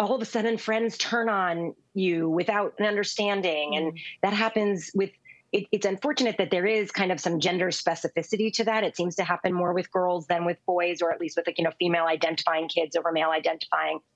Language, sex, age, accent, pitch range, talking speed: English, female, 30-49, American, 170-225 Hz, 210 wpm